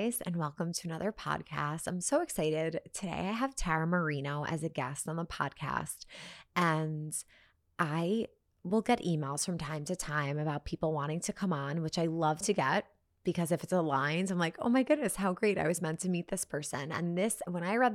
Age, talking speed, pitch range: 20-39, 205 wpm, 155-190 Hz